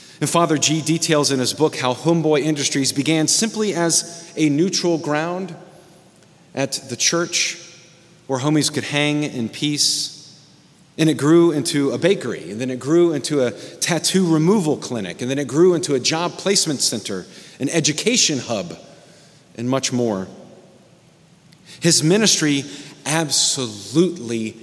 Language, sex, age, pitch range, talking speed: English, male, 40-59, 140-175 Hz, 140 wpm